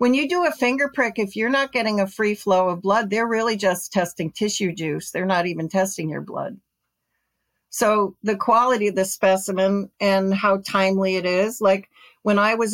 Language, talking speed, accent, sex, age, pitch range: English, 200 wpm, American, female, 60-79, 190-220 Hz